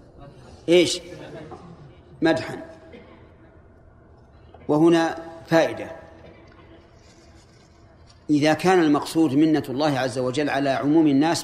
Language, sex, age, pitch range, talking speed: Arabic, male, 40-59, 125-165 Hz, 75 wpm